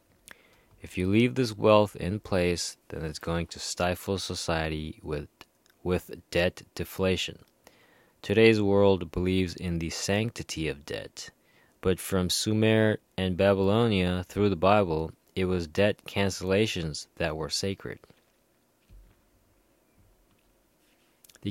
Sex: male